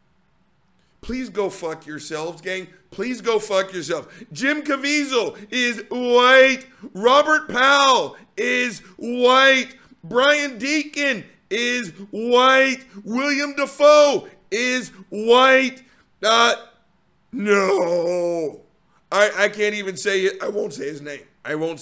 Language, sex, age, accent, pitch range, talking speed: English, male, 50-69, American, 200-280 Hz, 110 wpm